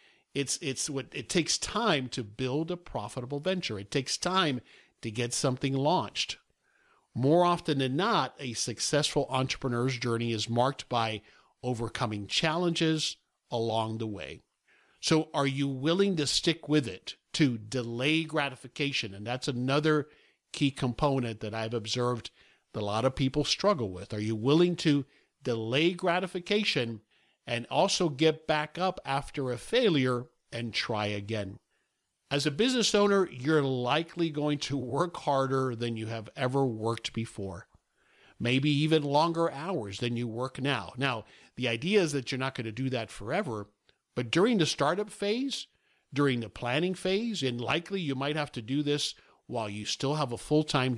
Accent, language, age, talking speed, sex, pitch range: American, English, 50-69, 160 wpm, male, 120-155 Hz